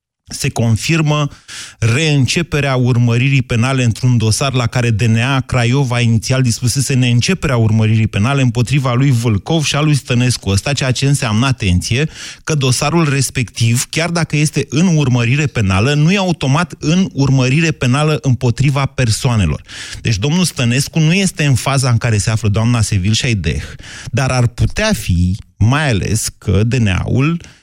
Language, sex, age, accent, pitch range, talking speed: Romanian, male, 30-49, native, 110-145 Hz, 145 wpm